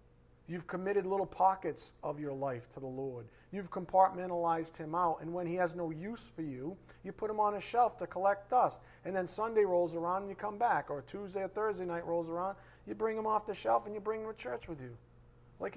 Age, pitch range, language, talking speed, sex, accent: 40-59, 125-190 Hz, English, 235 wpm, male, American